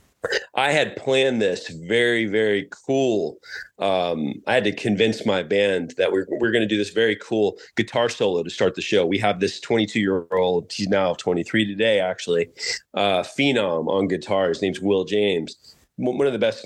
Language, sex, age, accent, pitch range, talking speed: English, male, 30-49, American, 100-140 Hz, 180 wpm